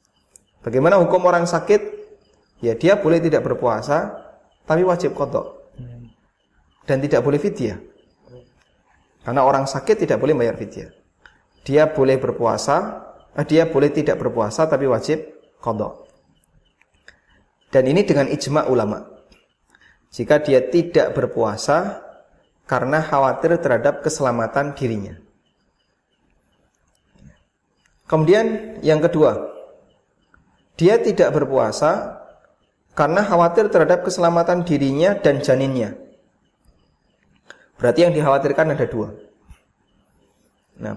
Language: Indonesian